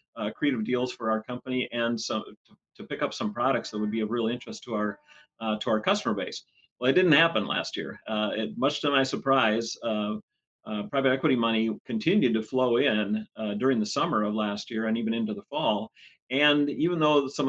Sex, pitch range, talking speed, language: male, 110-130 Hz, 220 wpm, English